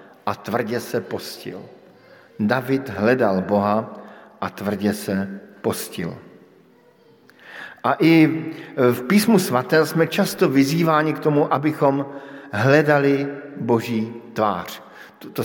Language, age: Slovak, 50-69